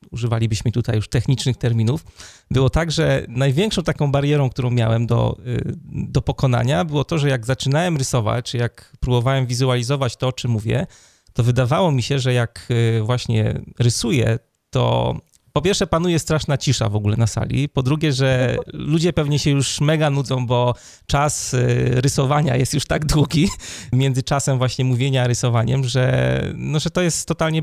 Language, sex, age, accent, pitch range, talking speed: Polish, male, 30-49, native, 120-140 Hz, 165 wpm